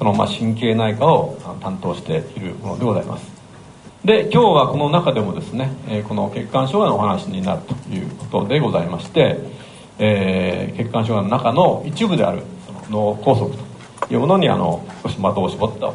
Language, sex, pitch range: Japanese, male, 115-155 Hz